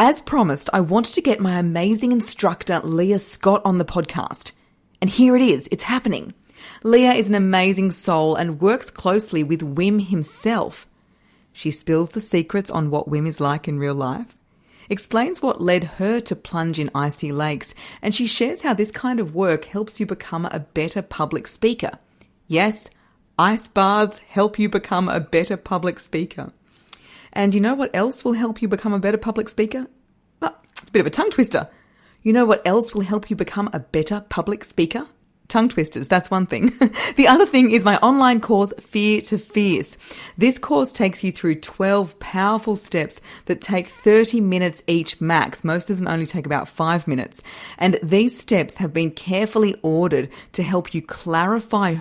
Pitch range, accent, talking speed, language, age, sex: 165-215 Hz, Australian, 180 wpm, English, 30-49, female